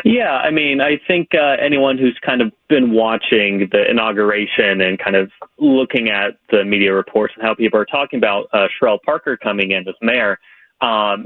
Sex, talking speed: male, 190 wpm